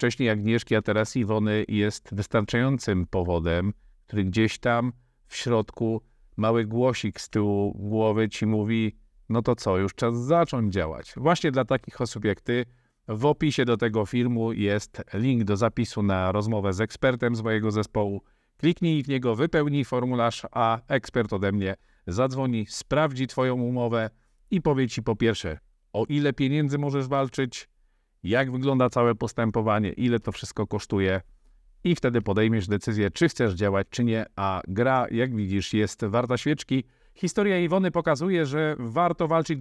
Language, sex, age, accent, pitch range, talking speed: Polish, male, 50-69, native, 110-145 Hz, 155 wpm